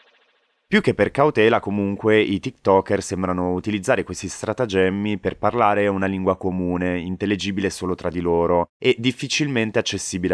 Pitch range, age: 85-105 Hz, 20-39